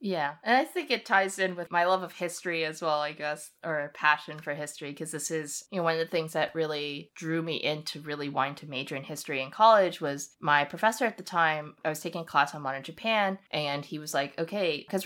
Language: English